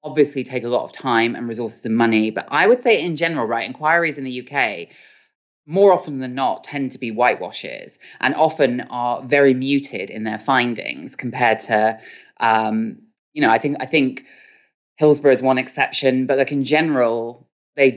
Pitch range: 125-145 Hz